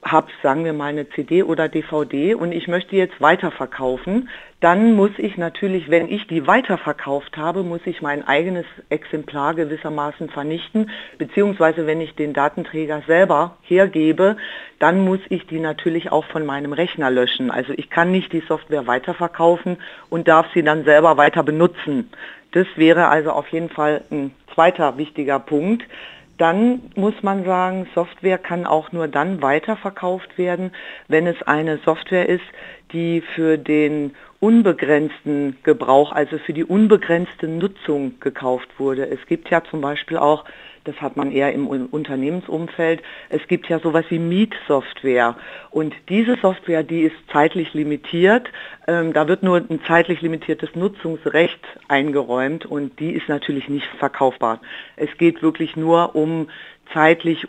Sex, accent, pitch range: female, German, 150-180 Hz